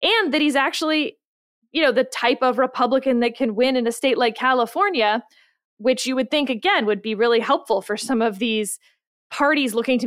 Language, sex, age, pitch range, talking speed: English, female, 20-39, 210-270 Hz, 205 wpm